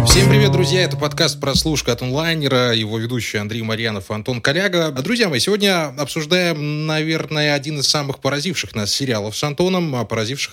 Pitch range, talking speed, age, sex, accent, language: 115-160 Hz, 165 wpm, 20-39, male, native, Russian